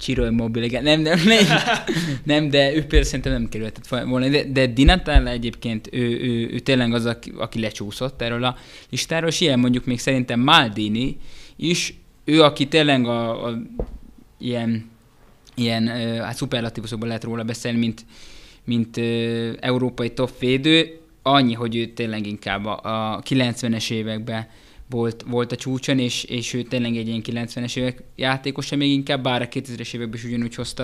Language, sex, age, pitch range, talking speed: Hungarian, male, 20-39, 115-135 Hz, 160 wpm